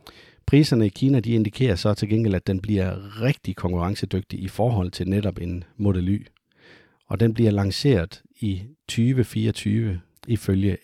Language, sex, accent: Danish, male, native